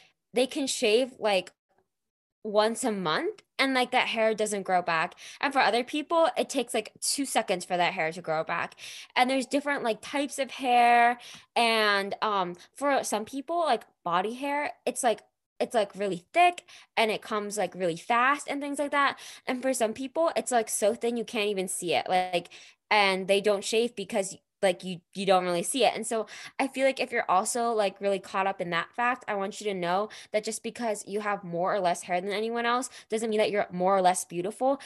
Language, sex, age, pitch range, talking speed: English, female, 20-39, 185-235 Hz, 215 wpm